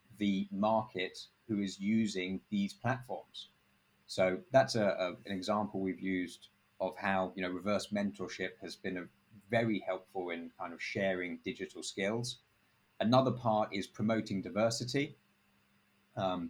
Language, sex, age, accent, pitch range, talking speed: English, male, 30-49, British, 95-115 Hz, 125 wpm